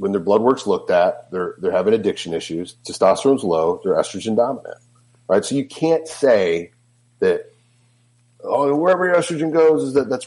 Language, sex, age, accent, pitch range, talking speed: English, male, 40-59, American, 110-145 Hz, 175 wpm